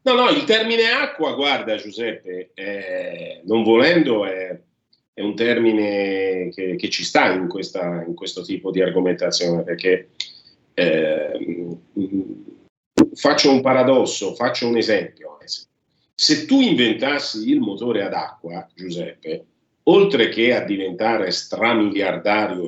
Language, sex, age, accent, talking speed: Italian, male, 40-59, native, 120 wpm